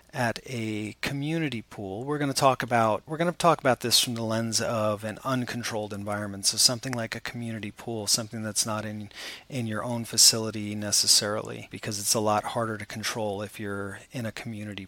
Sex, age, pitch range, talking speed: male, 30-49, 105-120 Hz, 200 wpm